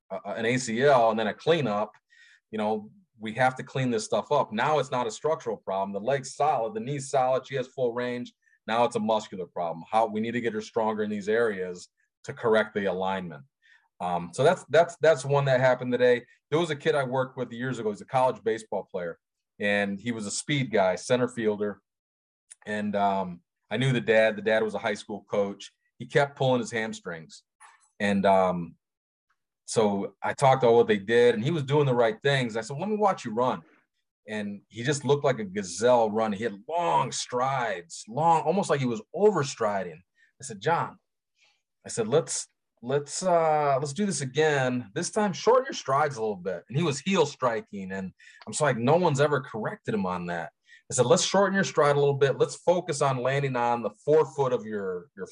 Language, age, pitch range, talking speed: English, 30-49, 110-155 Hz, 215 wpm